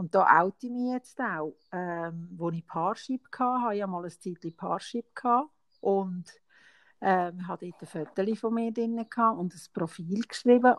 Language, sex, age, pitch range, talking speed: German, female, 50-69, 175-225 Hz, 190 wpm